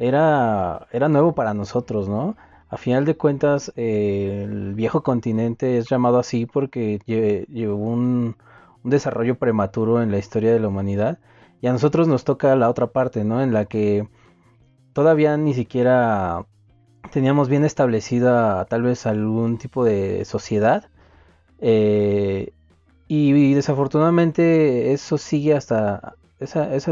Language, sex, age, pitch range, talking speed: Spanish, male, 30-49, 105-140 Hz, 140 wpm